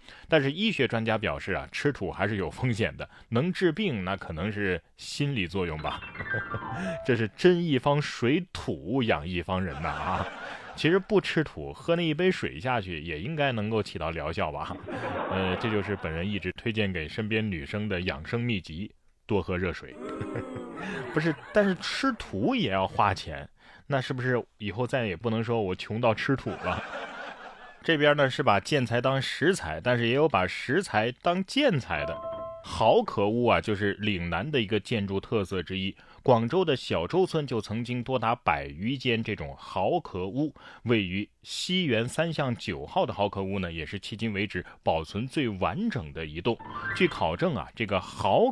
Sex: male